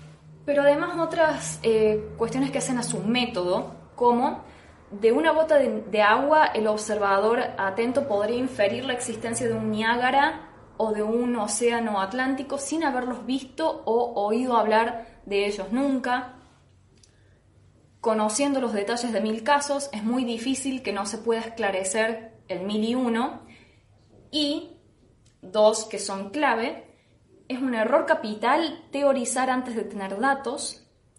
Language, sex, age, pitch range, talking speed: Spanish, female, 20-39, 200-255 Hz, 140 wpm